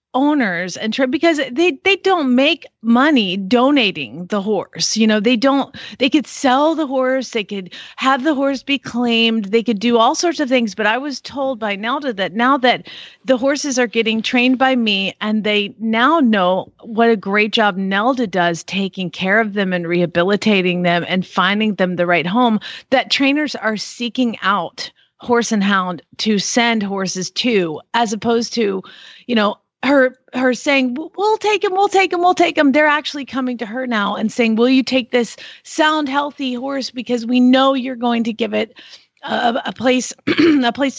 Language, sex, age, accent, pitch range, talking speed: English, female, 40-59, American, 205-265 Hz, 190 wpm